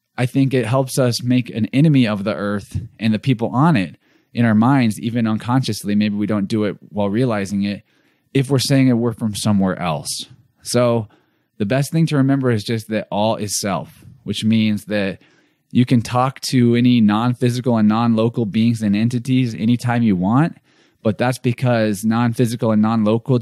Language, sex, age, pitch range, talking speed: English, male, 20-39, 105-125 Hz, 185 wpm